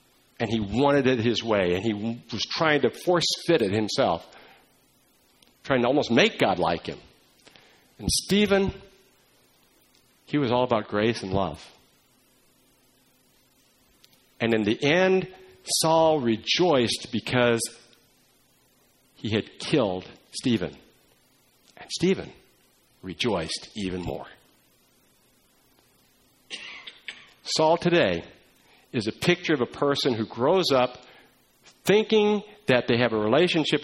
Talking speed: 115 wpm